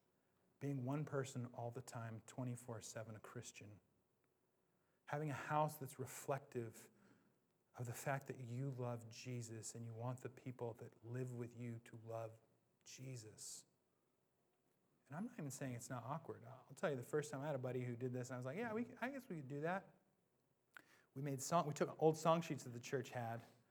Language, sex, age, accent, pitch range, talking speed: English, male, 30-49, American, 125-180 Hz, 195 wpm